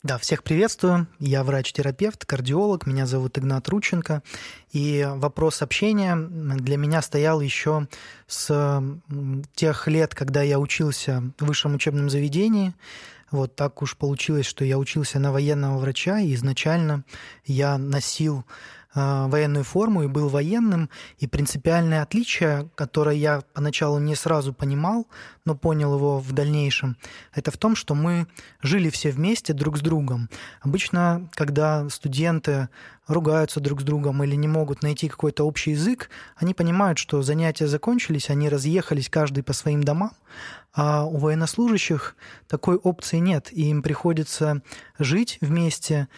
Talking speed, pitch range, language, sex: 140 wpm, 140-165 Hz, Russian, male